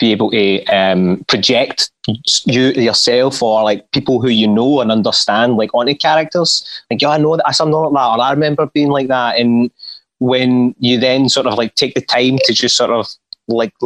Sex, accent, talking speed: male, British, 200 wpm